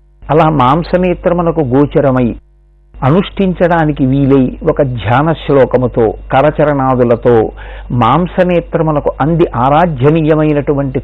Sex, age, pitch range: male, 50-69, 135-170 Hz